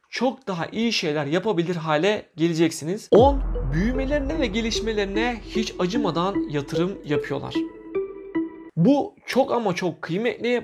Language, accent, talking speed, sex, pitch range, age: Turkish, native, 115 wpm, male, 165-235 Hz, 40-59